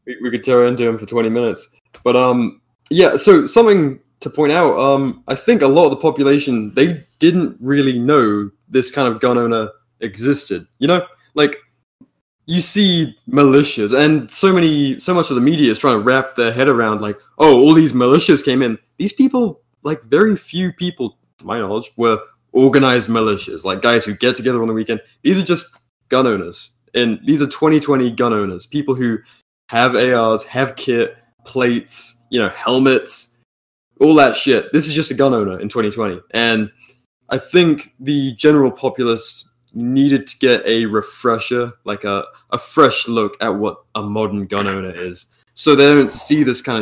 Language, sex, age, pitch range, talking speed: English, male, 20-39, 110-145 Hz, 185 wpm